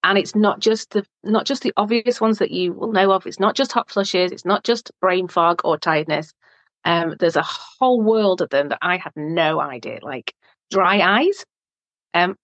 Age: 40-59